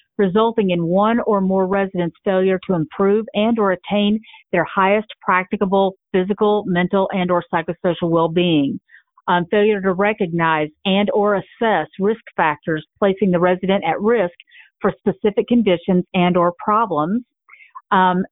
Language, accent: English, American